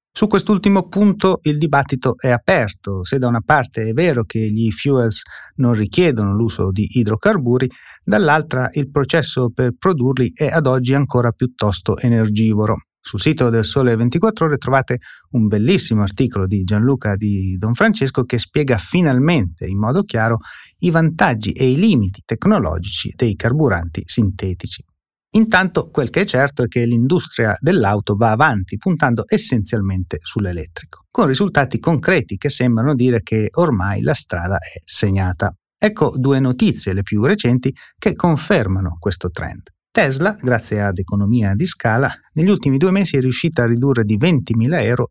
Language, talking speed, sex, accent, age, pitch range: Italian, 150 wpm, male, native, 30-49, 105-145 Hz